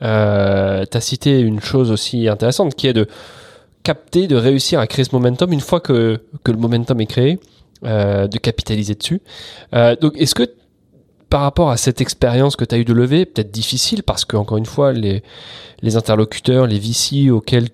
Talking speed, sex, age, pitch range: 190 wpm, male, 20-39, 105-130 Hz